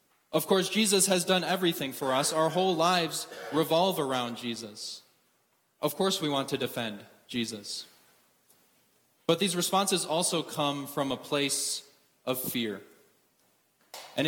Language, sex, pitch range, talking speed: English, male, 130-160 Hz, 135 wpm